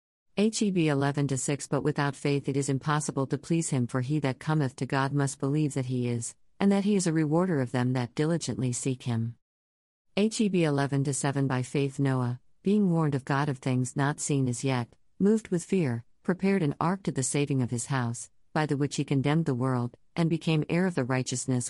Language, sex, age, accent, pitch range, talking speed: English, female, 50-69, American, 130-160 Hz, 205 wpm